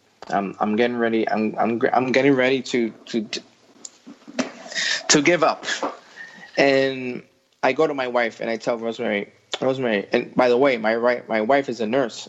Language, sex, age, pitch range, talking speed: English, male, 20-39, 110-135 Hz, 175 wpm